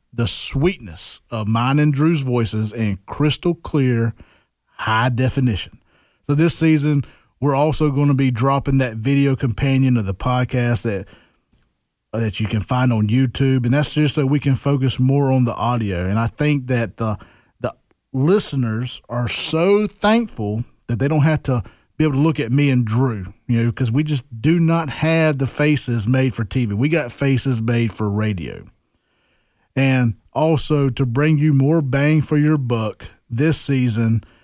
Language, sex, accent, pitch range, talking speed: English, male, American, 115-150 Hz, 175 wpm